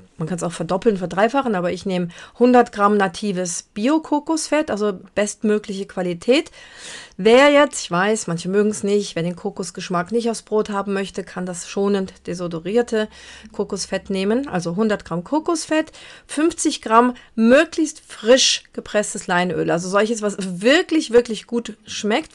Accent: German